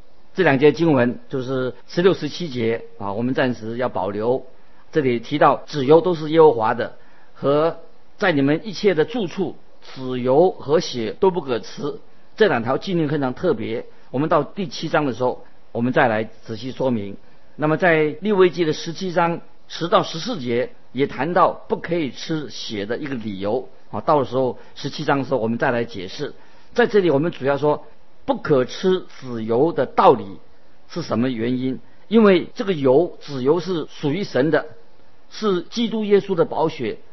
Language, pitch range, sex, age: Chinese, 125-170 Hz, male, 50-69